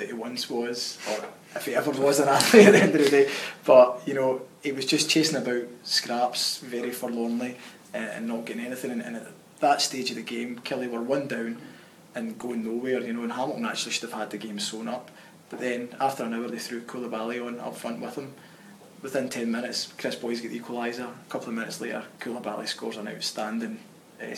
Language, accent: English, British